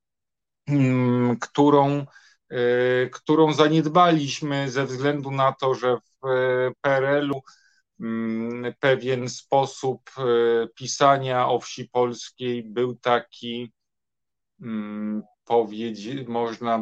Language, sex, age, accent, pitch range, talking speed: Polish, male, 40-59, native, 115-140 Hz, 70 wpm